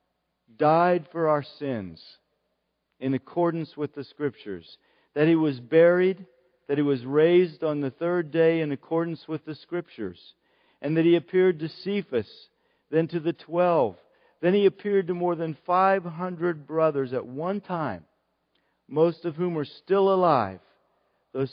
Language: English